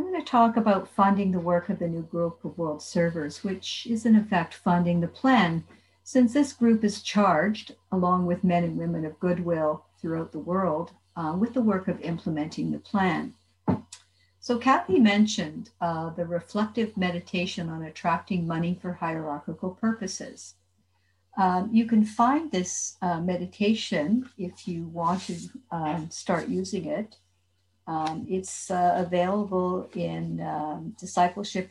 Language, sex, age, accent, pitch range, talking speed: English, female, 60-79, American, 165-210 Hz, 150 wpm